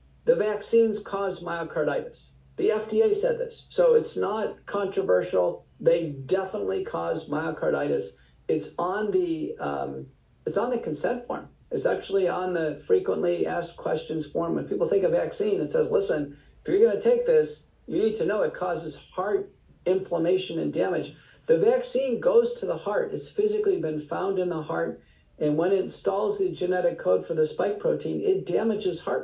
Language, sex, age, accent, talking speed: English, male, 50-69, American, 170 wpm